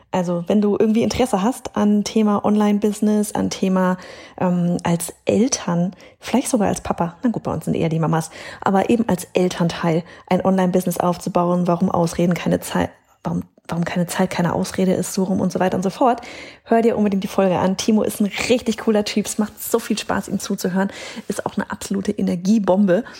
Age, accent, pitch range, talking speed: 30-49, German, 180-225 Hz, 195 wpm